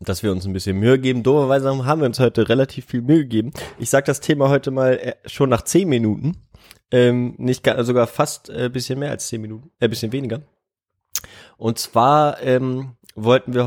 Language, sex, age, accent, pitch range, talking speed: German, male, 20-39, German, 110-130 Hz, 215 wpm